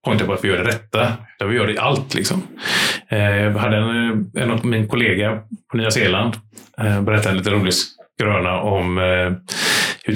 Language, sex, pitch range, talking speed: Swedish, male, 105-140 Hz, 190 wpm